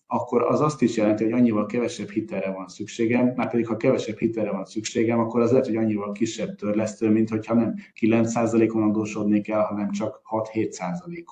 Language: Hungarian